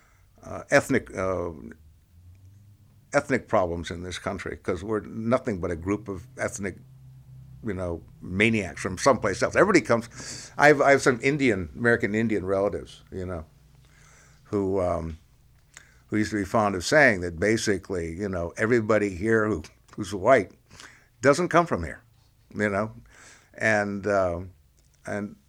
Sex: male